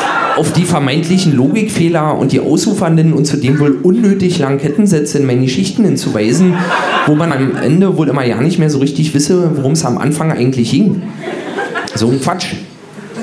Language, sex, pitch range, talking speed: German, male, 135-175 Hz, 170 wpm